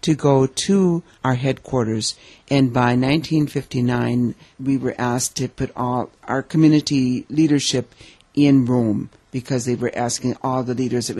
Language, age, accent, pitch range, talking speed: English, 60-79, American, 120-145 Hz, 145 wpm